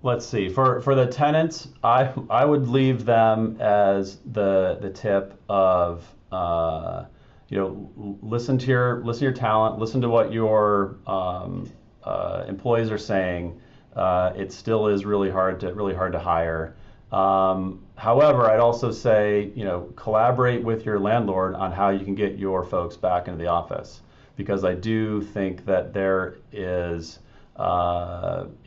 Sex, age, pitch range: male, 30-49, 90-110 Hz